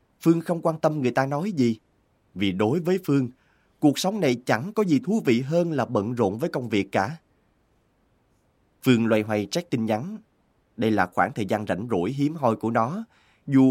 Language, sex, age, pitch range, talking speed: Vietnamese, male, 20-39, 105-150 Hz, 200 wpm